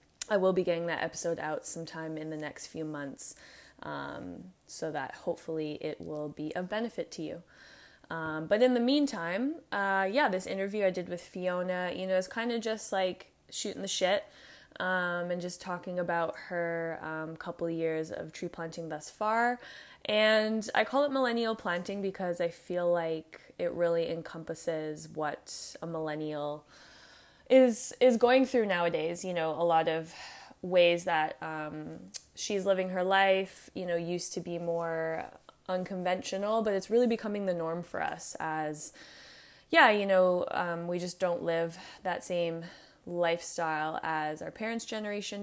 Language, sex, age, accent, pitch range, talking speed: English, female, 20-39, American, 165-195 Hz, 165 wpm